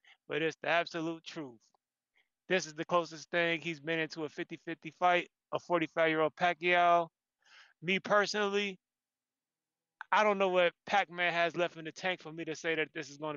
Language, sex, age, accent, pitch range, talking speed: English, male, 20-39, American, 155-185 Hz, 175 wpm